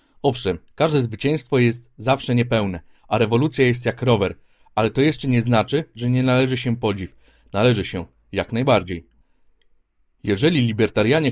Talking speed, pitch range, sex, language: 145 wpm, 105-130 Hz, male, Polish